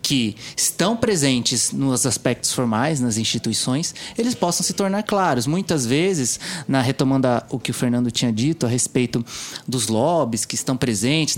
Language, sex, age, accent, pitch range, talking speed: Portuguese, male, 20-39, Brazilian, 130-170 Hz, 155 wpm